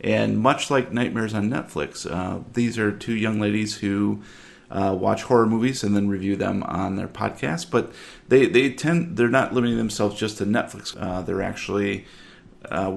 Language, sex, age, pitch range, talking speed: English, male, 30-49, 100-120 Hz, 170 wpm